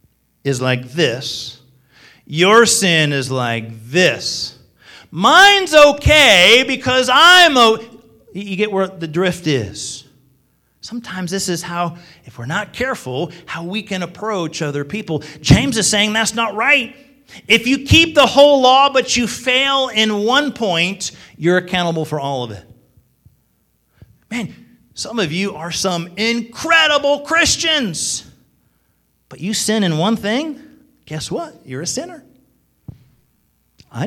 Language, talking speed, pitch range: English, 135 wpm, 160-235 Hz